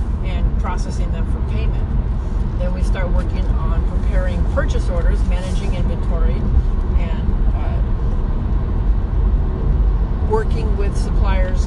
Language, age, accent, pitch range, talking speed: English, 40-59, American, 65-80 Hz, 105 wpm